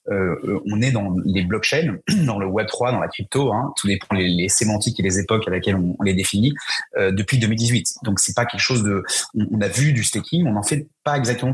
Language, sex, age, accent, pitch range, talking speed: French, male, 30-49, French, 100-125 Hz, 245 wpm